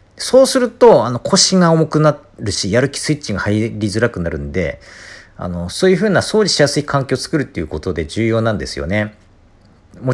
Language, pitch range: Japanese, 90-140 Hz